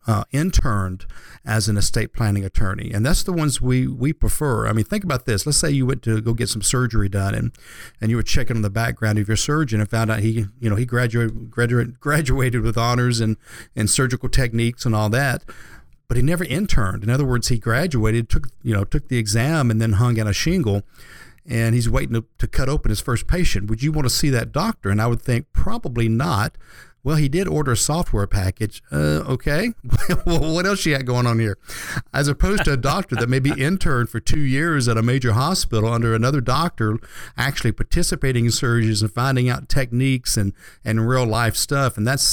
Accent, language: American, English